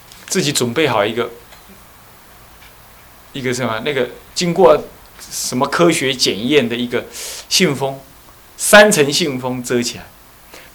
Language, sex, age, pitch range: Chinese, male, 20-39, 130-185 Hz